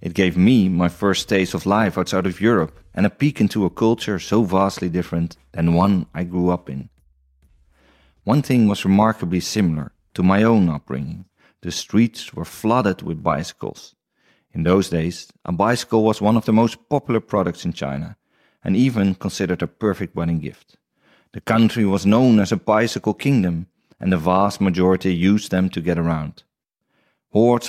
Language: Dutch